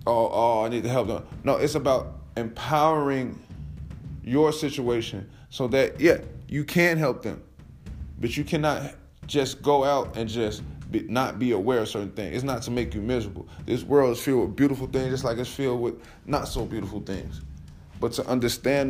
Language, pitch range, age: English, 100-135 Hz, 20-39